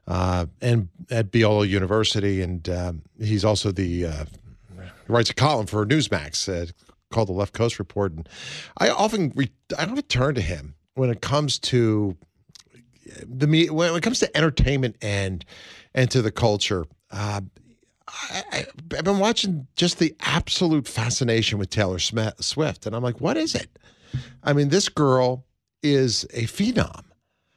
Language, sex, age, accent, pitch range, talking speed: English, male, 50-69, American, 100-140 Hz, 160 wpm